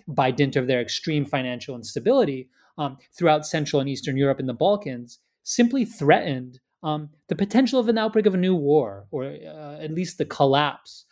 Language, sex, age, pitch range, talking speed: English, male, 30-49, 130-175 Hz, 185 wpm